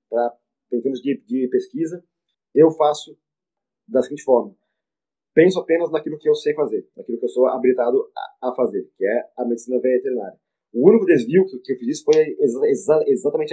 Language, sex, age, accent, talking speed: Portuguese, male, 20-39, Brazilian, 175 wpm